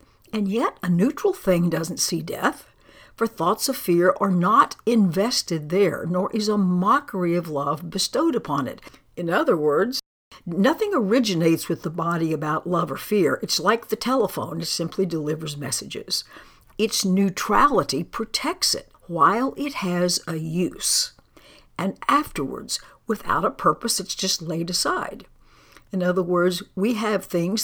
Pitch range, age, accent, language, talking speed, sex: 170-225 Hz, 60-79, American, English, 150 wpm, female